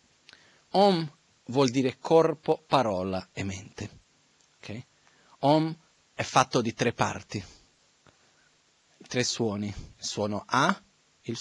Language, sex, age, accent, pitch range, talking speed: Italian, male, 40-59, native, 105-135 Hz, 105 wpm